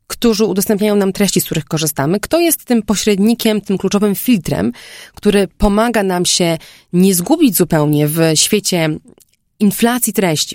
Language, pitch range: Polish, 165-205 Hz